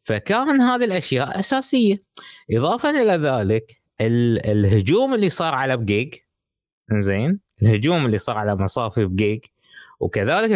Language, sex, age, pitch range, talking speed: Arabic, male, 20-39, 100-150 Hz, 115 wpm